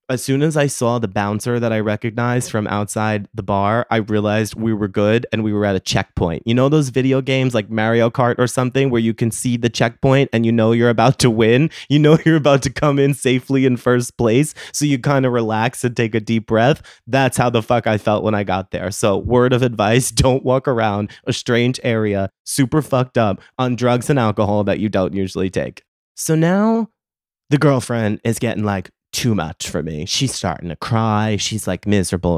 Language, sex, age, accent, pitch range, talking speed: English, male, 20-39, American, 105-135 Hz, 220 wpm